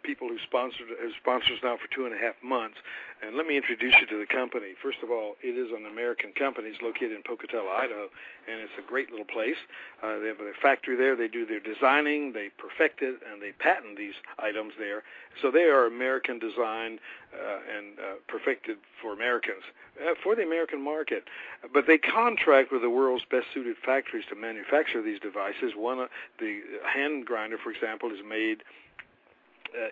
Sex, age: male, 60-79